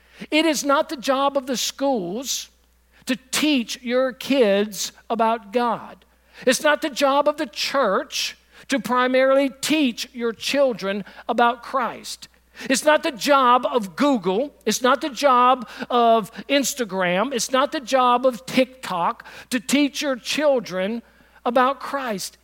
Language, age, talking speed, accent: English, 60-79, 140 wpm, American